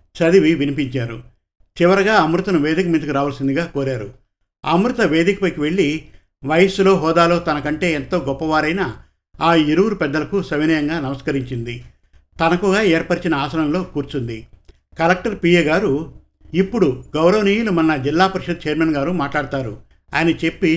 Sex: male